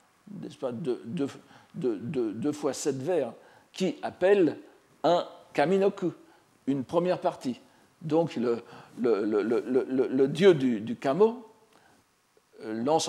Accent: French